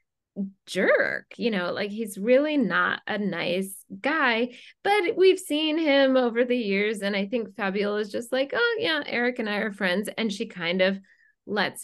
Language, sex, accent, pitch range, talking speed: English, female, American, 195-250 Hz, 185 wpm